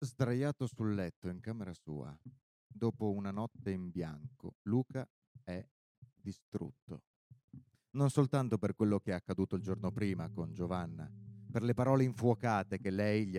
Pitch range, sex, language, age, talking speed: 105-130 Hz, male, Italian, 30-49, 150 wpm